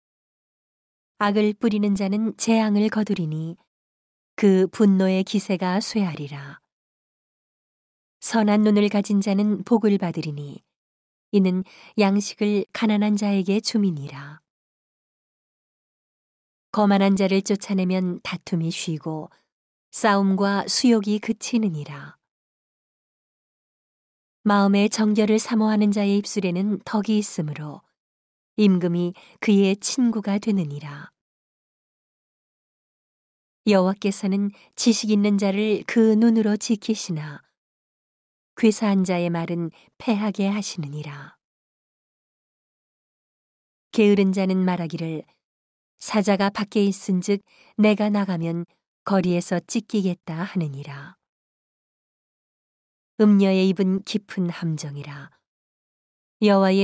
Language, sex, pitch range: Korean, female, 175-210 Hz